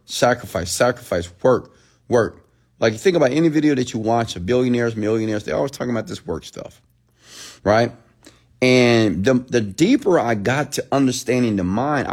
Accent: American